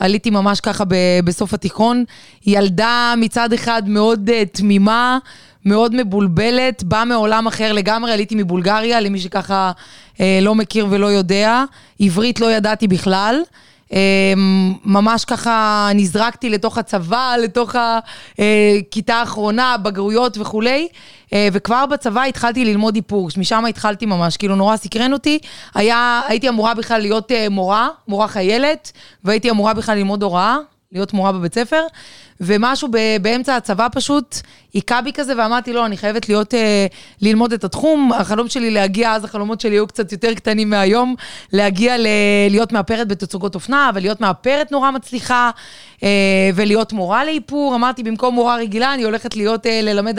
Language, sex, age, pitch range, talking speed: Hebrew, female, 20-39, 200-235 Hz, 140 wpm